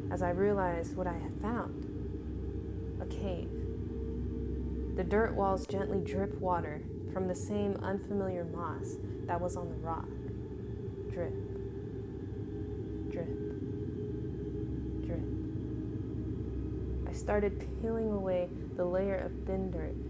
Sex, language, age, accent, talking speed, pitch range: female, English, 20-39, American, 110 wpm, 65-100 Hz